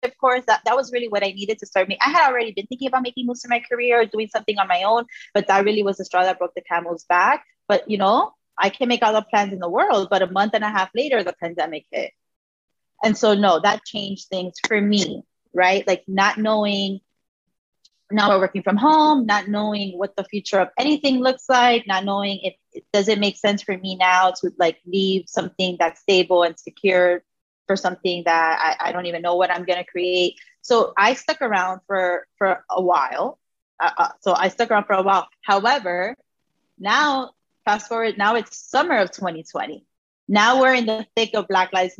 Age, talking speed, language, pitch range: 20-39, 215 wpm, English, 185-230 Hz